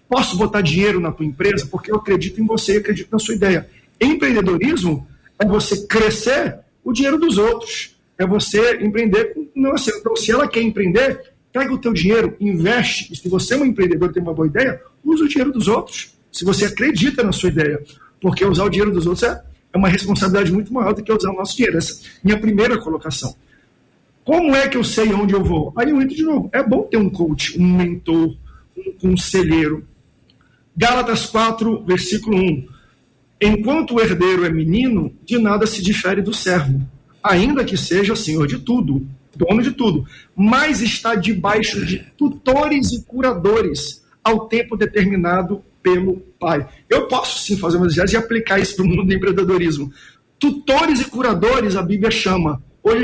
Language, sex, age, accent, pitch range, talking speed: Portuguese, male, 50-69, Brazilian, 180-230 Hz, 185 wpm